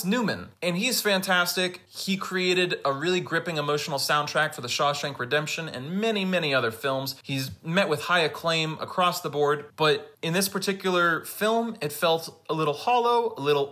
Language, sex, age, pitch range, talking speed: English, male, 30-49, 130-180 Hz, 175 wpm